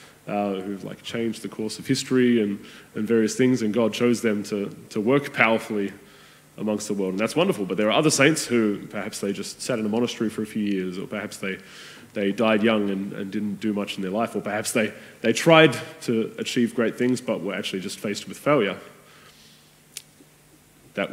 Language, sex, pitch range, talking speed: English, male, 105-125 Hz, 220 wpm